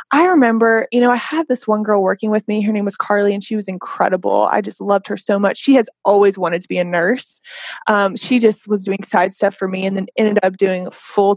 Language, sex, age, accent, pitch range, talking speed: English, female, 20-39, American, 195-240 Hz, 260 wpm